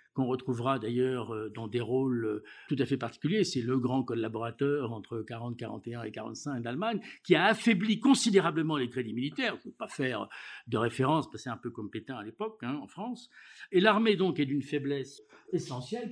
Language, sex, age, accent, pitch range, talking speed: French, male, 60-79, French, 135-210 Hz, 195 wpm